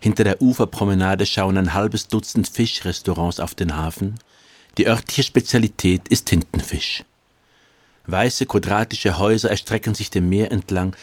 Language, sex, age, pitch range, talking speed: German, male, 50-69, 90-115 Hz, 130 wpm